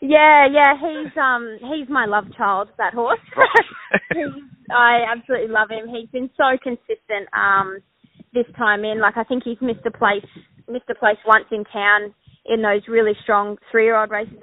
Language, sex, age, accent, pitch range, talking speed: English, female, 20-39, Australian, 210-240 Hz, 170 wpm